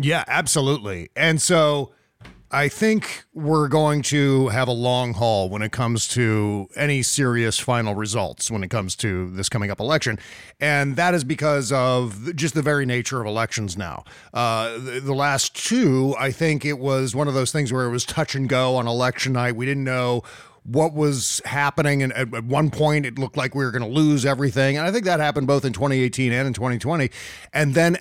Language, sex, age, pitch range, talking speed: English, male, 40-59, 120-155 Hz, 205 wpm